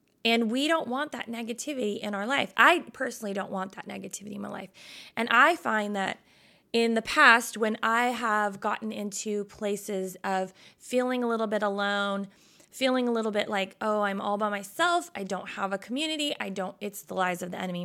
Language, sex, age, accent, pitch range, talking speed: English, female, 20-39, American, 195-245 Hz, 200 wpm